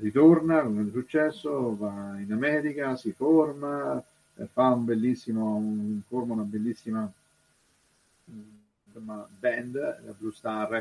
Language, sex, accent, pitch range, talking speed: Italian, male, native, 105-145 Hz, 110 wpm